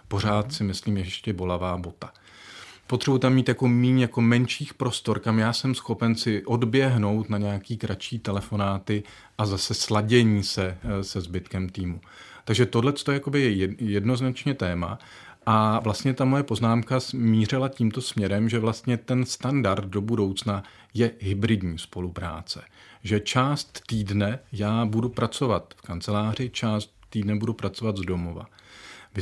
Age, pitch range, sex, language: 40-59, 100-125 Hz, male, Czech